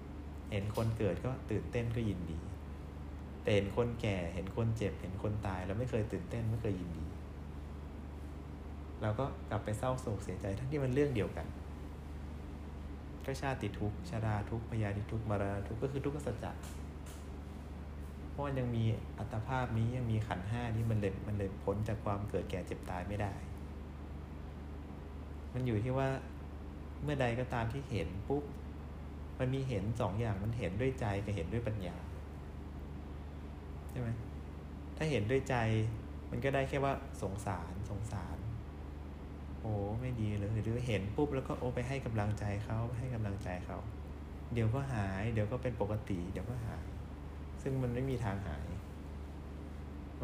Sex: male